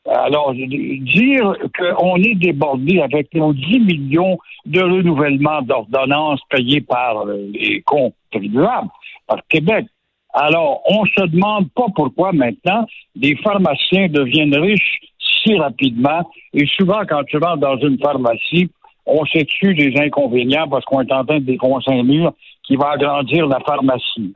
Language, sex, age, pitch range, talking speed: French, male, 60-79, 140-175 Hz, 140 wpm